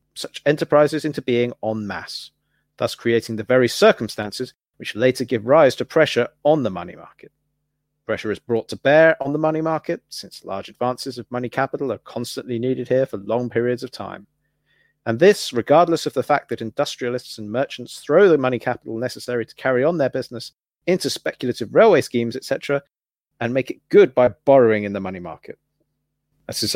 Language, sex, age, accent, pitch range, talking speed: English, male, 40-59, British, 115-145 Hz, 185 wpm